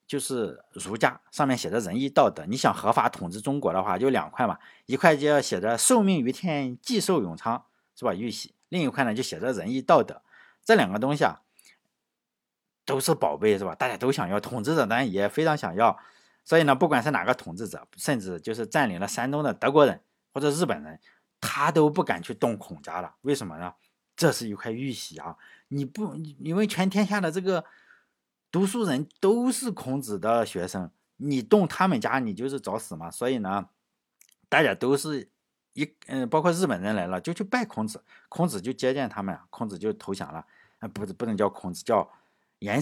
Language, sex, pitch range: Chinese, male, 115-180 Hz